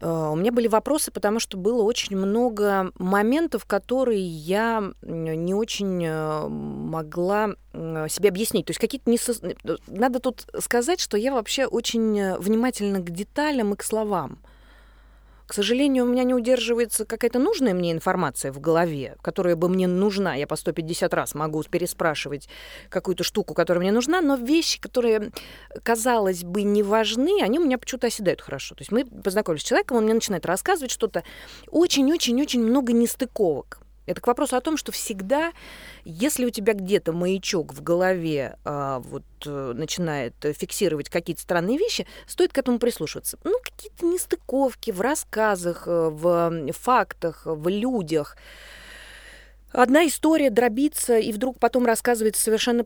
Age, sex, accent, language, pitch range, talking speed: 20-39, female, native, Russian, 175-250 Hz, 150 wpm